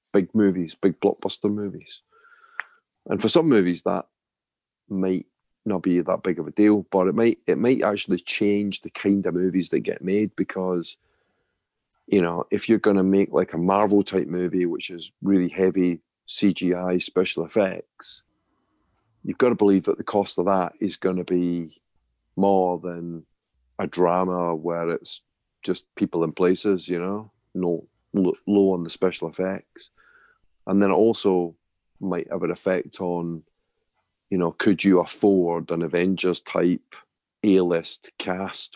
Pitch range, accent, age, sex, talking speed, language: 85-100 Hz, British, 40-59, male, 155 wpm, English